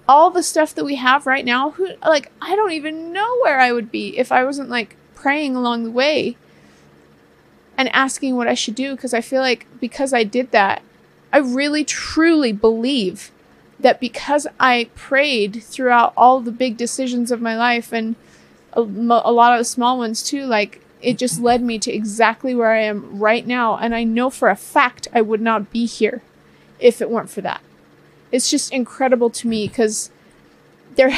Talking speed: 190 wpm